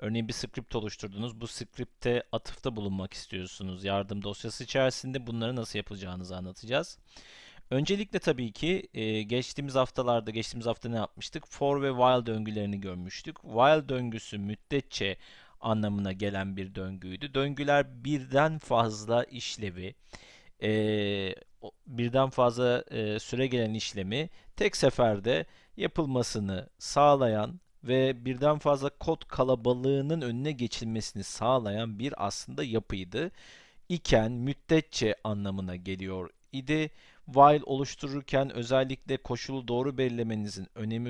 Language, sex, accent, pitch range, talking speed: Turkish, male, native, 105-135 Hz, 105 wpm